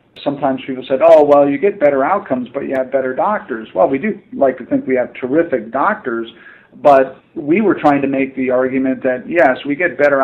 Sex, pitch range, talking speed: male, 125-145 Hz, 215 wpm